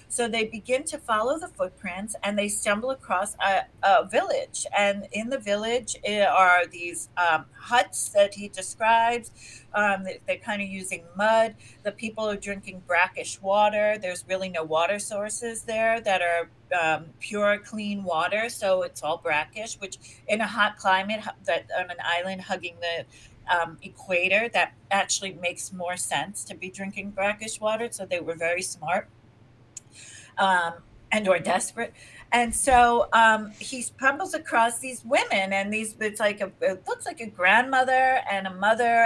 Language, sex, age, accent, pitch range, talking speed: English, female, 40-59, American, 180-225 Hz, 165 wpm